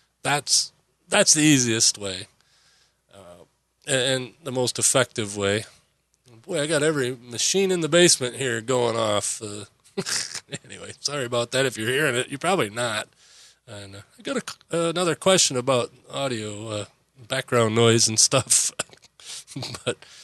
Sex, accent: male, American